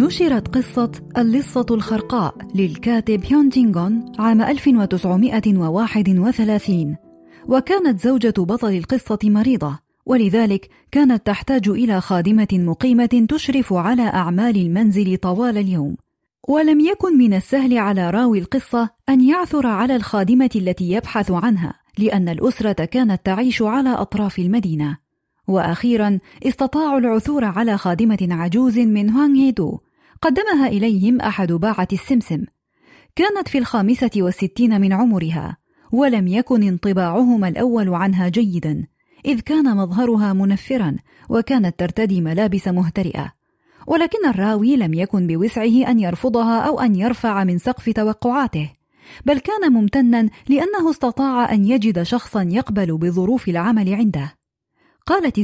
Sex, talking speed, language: female, 115 wpm, Arabic